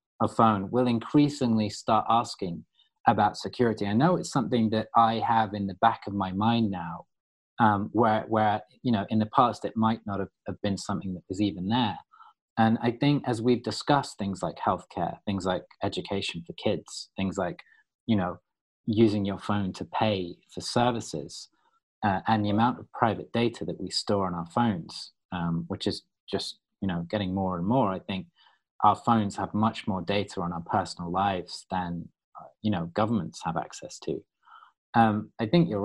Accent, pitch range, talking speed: British, 95-115 Hz, 185 wpm